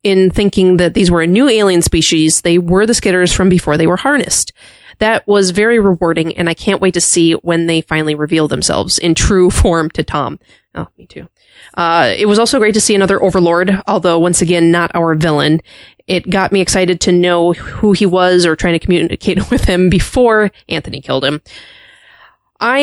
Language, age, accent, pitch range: English, 20-39, American, 170-205 Hz